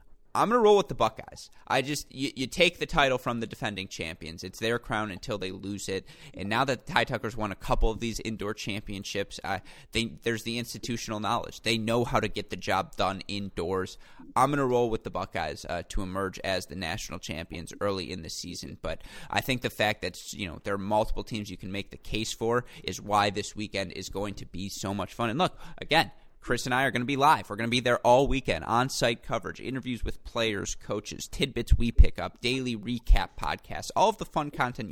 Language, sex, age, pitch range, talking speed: English, male, 20-39, 100-120 Hz, 225 wpm